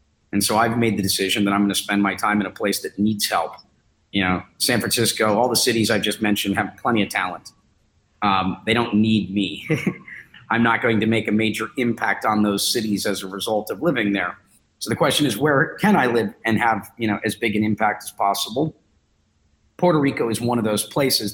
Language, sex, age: English, male, 40-59